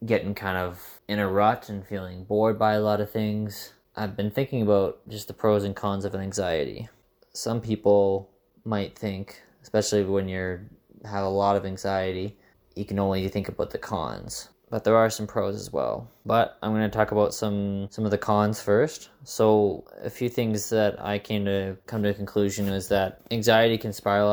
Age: 20-39